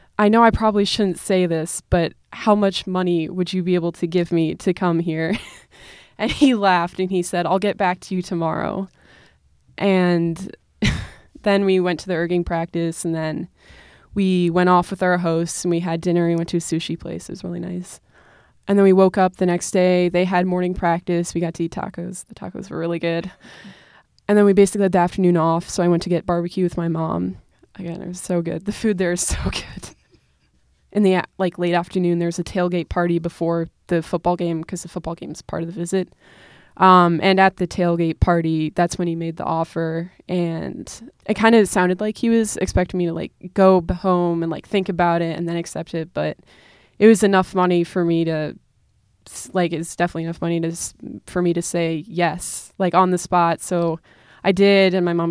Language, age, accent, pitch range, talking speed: English, 20-39, American, 170-185 Hz, 215 wpm